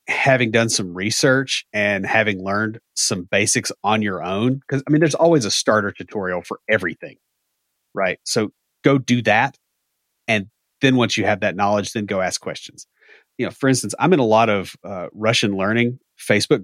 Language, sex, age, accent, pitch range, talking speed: English, male, 30-49, American, 100-130 Hz, 185 wpm